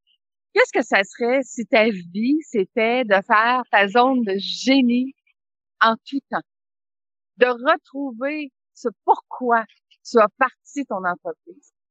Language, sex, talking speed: French, female, 130 wpm